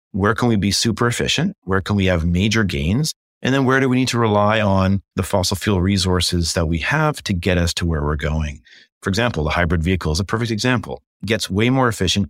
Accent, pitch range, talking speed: American, 90-115 Hz, 235 wpm